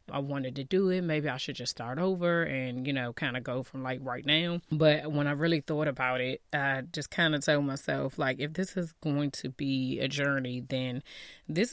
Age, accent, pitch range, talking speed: 20-39, American, 135-150 Hz, 230 wpm